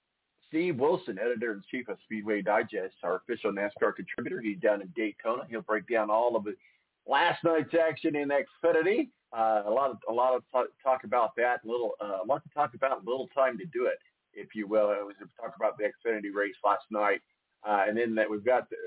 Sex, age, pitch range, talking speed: male, 50-69, 105-135 Hz, 235 wpm